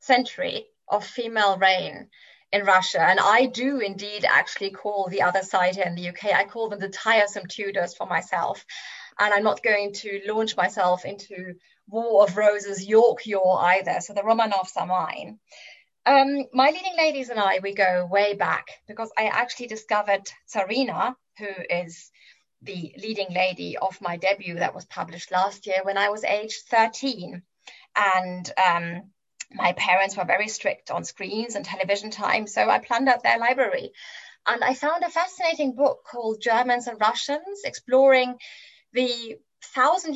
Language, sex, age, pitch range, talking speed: English, female, 30-49, 195-255 Hz, 165 wpm